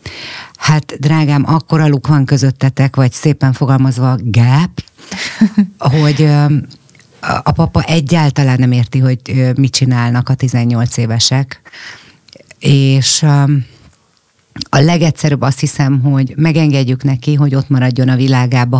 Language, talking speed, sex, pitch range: Hungarian, 110 wpm, female, 130-150 Hz